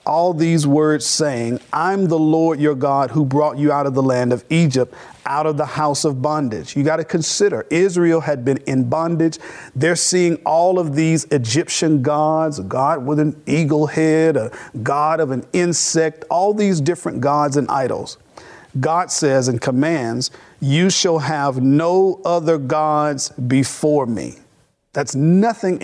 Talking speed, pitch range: 165 wpm, 140-170 Hz